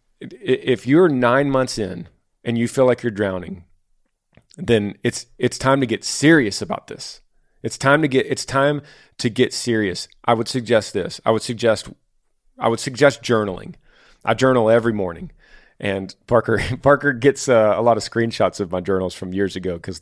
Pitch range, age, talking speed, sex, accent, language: 105-135 Hz, 40-59, 180 wpm, male, American, English